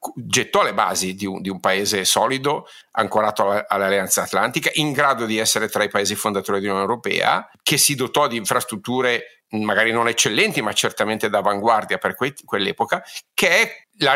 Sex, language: male, Italian